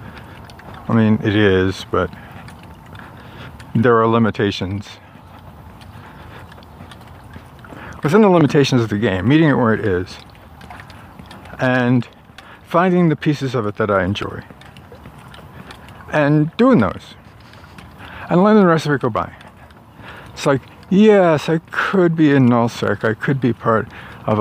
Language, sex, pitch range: English, male, 100-120 Hz